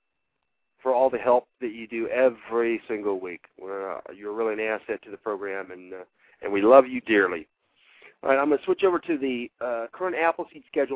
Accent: American